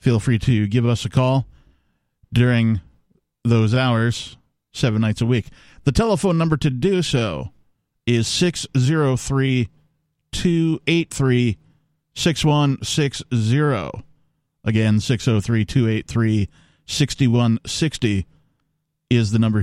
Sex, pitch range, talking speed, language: male, 110-150 Hz, 95 wpm, English